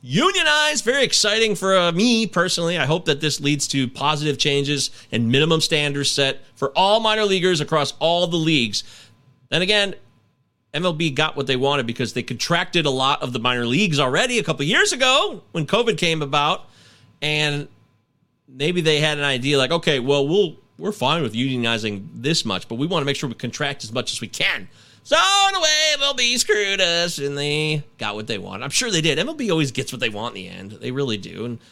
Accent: American